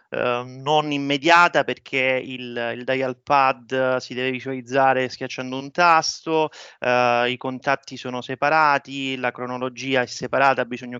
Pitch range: 125-150 Hz